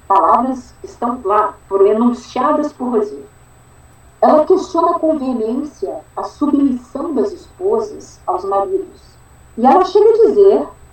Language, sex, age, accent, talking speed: Portuguese, female, 50-69, Brazilian, 120 wpm